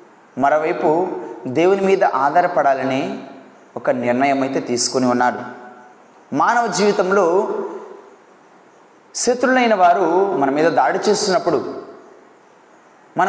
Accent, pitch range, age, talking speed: native, 135-225 Hz, 20-39, 80 wpm